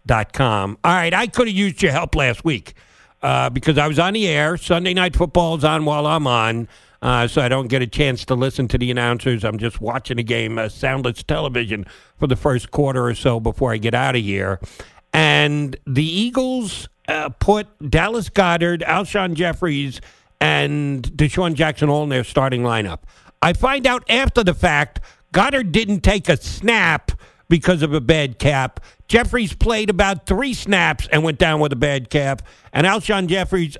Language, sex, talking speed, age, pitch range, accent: English, male, 190 wpm, 50-69, 130-190 Hz, American